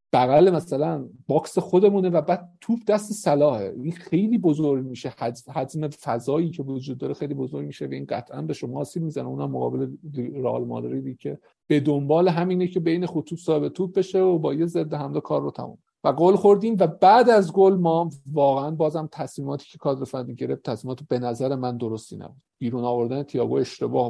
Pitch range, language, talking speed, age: 125-170 Hz, Persian, 185 wpm, 50-69